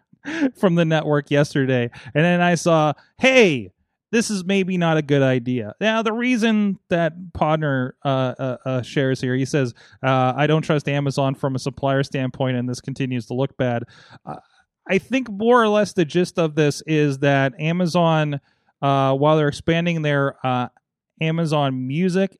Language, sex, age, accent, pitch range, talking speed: English, male, 30-49, American, 130-170 Hz, 170 wpm